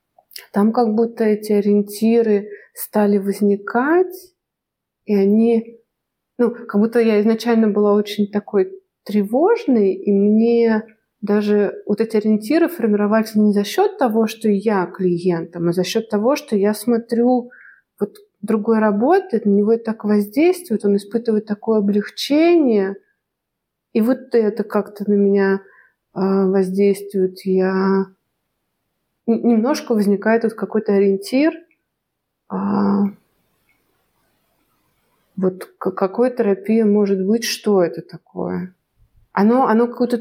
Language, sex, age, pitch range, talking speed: Russian, female, 30-49, 200-235 Hz, 115 wpm